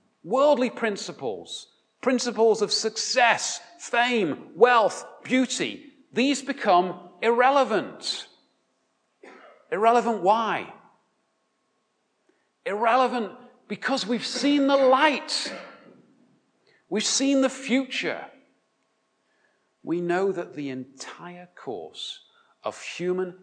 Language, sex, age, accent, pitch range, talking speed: English, male, 40-59, British, 155-225 Hz, 80 wpm